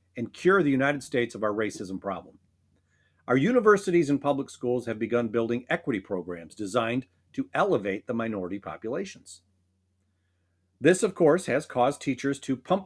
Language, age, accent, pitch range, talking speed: English, 40-59, American, 95-140 Hz, 155 wpm